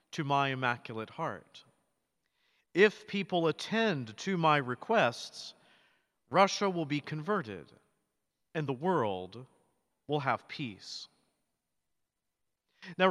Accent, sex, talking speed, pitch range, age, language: American, male, 90 wpm, 130-175 Hz, 50-69, English